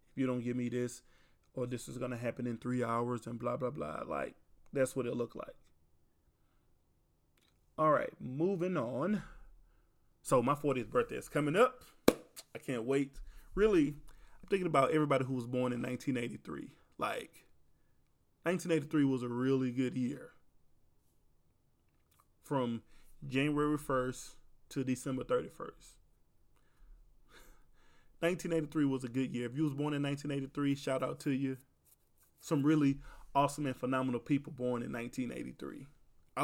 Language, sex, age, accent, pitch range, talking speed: English, male, 20-39, American, 100-140 Hz, 140 wpm